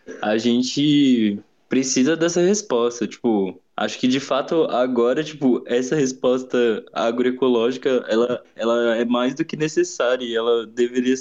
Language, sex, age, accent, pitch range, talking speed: Portuguese, male, 20-39, Brazilian, 115-145 Hz, 135 wpm